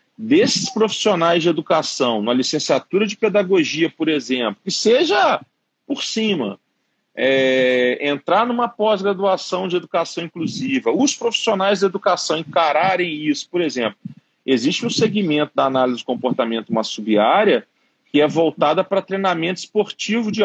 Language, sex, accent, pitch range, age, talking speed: Portuguese, male, Brazilian, 150-215 Hz, 40-59, 130 wpm